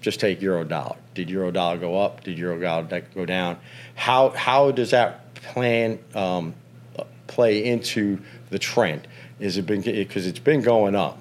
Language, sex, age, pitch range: English, male, 40-59, 95-115 Hz